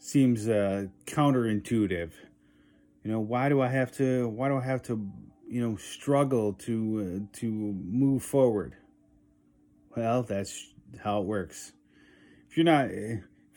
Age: 30-49